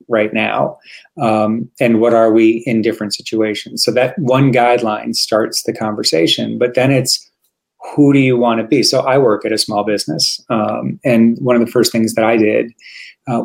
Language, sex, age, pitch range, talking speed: English, male, 30-49, 110-125 Hz, 195 wpm